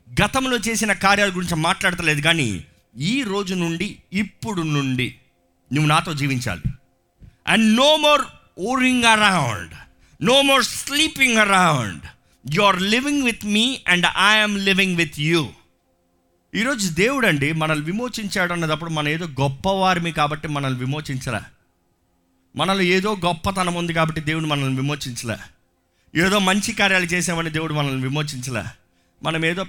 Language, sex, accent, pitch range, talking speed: Telugu, male, native, 130-190 Hz, 125 wpm